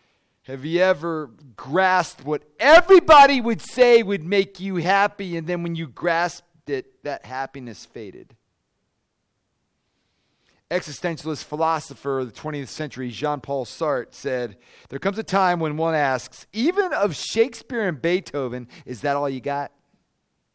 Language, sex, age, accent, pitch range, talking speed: English, male, 40-59, American, 140-170 Hz, 135 wpm